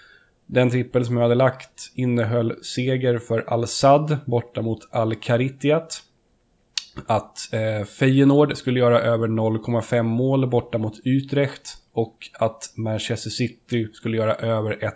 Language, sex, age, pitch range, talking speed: Swedish, male, 10-29, 115-130 Hz, 130 wpm